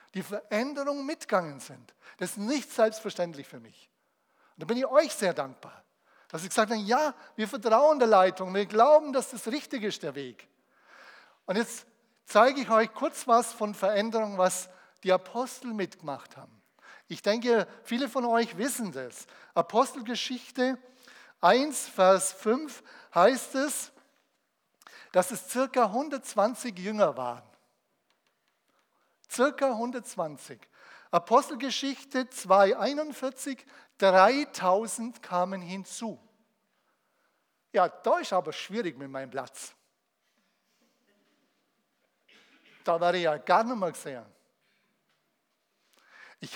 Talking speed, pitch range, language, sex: 115 wpm, 180-255 Hz, German, male